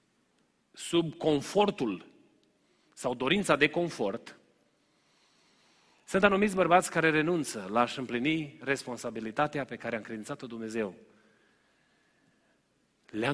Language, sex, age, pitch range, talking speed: Romanian, male, 30-49, 155-215 Hz, 95 wpm